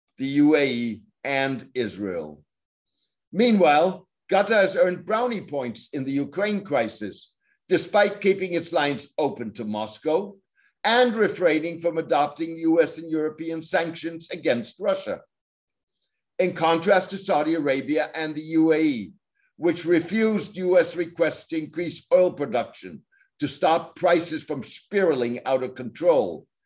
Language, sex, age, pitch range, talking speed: English, male, 60-79, 150-195 Hz, 125 wpm